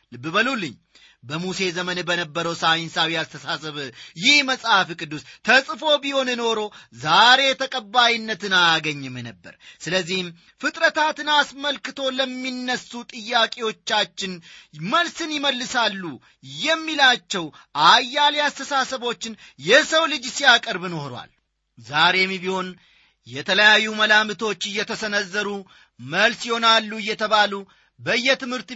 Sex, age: male, 30-49